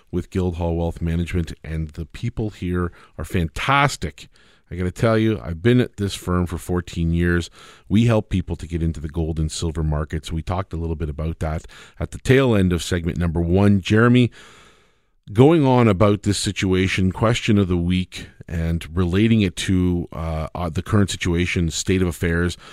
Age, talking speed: 40-59, 185 wpm